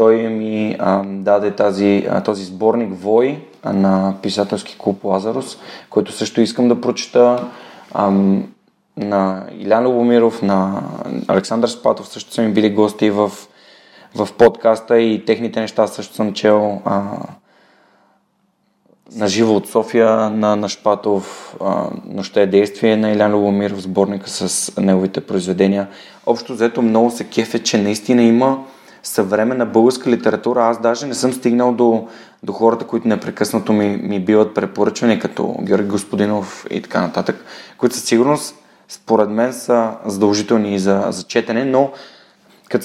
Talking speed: 140 wpm